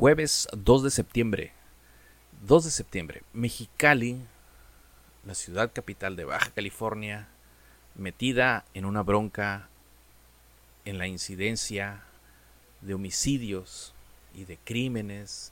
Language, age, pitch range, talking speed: Spanish, 40-59, 85-115 Hz, 100 wpm